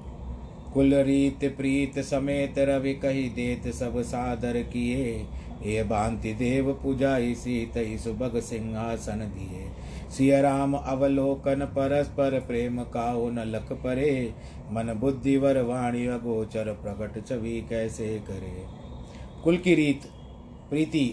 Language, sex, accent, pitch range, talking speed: Hindi, male, native, 115-135 Hz, 35 wpm